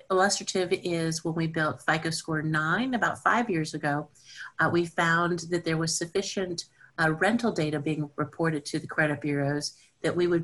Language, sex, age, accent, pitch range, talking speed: English, female, 50-69, American, 155-180 Hz, 180 wpm